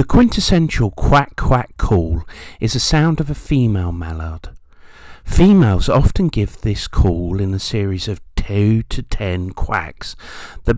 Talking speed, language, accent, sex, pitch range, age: 145 wpm, English, British, male, 90-120 Hz, 50-69